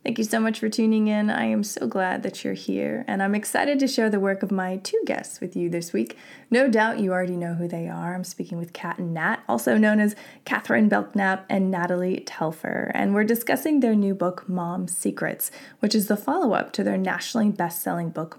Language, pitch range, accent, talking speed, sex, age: English, 175-215 Hz, American, 220 wpm, female, 20-39